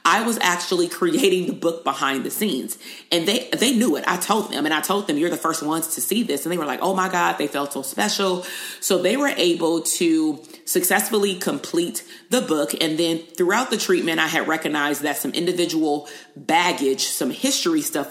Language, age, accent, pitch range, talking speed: English, 30-49, American, 150-190 Hz, 210 wpm